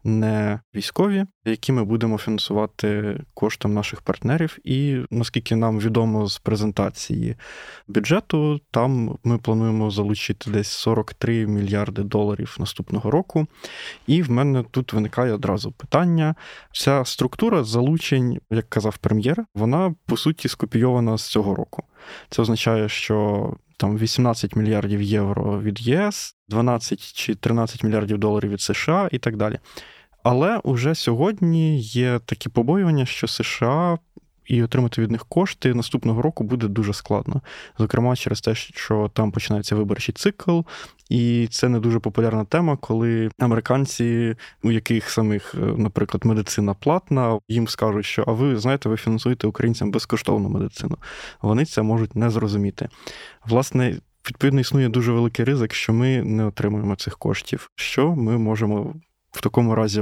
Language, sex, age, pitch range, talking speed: English, male, 20-39, 110-130 Hz, 140 wpm